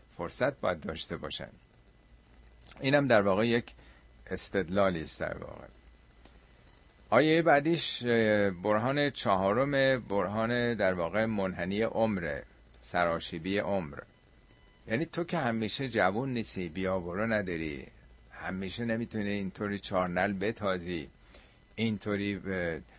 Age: 50-69